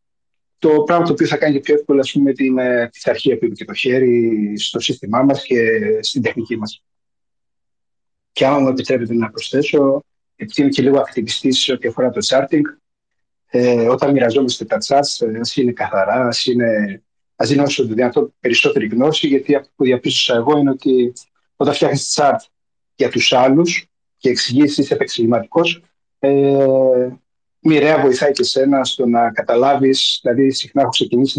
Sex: male